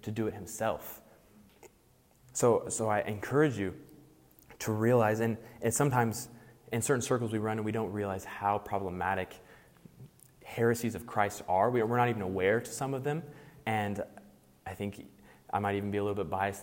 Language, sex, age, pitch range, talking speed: English, male, 20-39, 100-120 Hz, 180 wpm